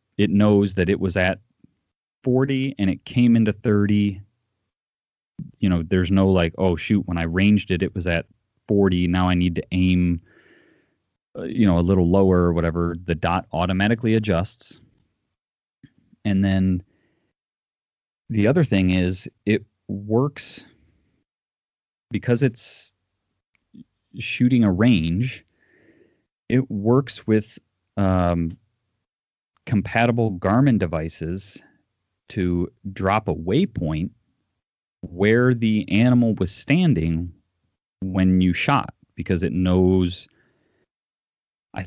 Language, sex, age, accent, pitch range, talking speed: English, male, 30-49, American, 90-110 Hz, 115 wpm